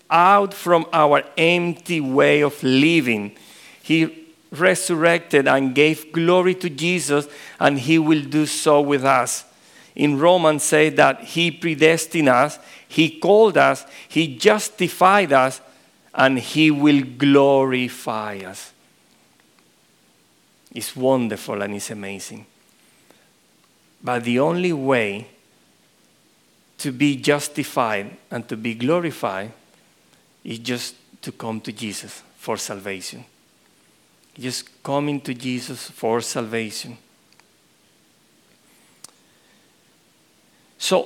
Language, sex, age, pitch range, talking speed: English, male, 50-69, 125-160 Hz, 100 wpm